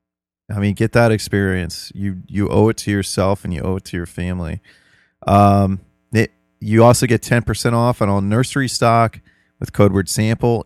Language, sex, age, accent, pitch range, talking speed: English, male, 30-49, American, 95-115 Hz, 185 wpm